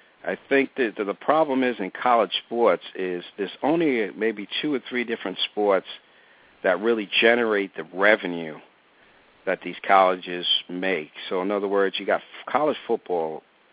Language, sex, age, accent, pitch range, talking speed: English, male, 50-69, American, 95-135 Hz, 155 wpm